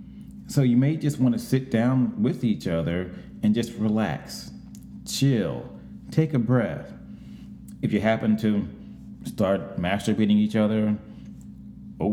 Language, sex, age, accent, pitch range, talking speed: English, male, 30-49, American, 95-125 Hz, 135 wpm